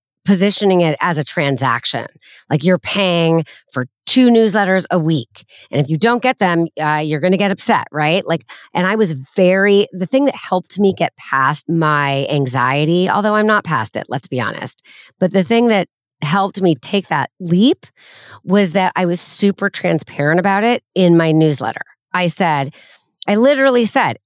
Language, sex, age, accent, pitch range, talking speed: English, female, 30-49, American, 150-200 Hz, 180 wpm